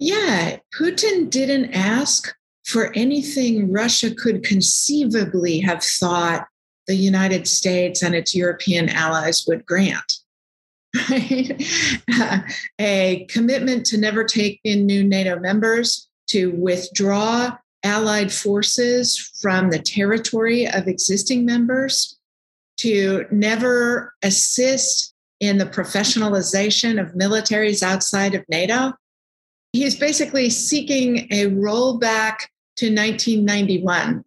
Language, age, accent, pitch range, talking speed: English, 50-69, American, 195-250 Hz, 100 wpm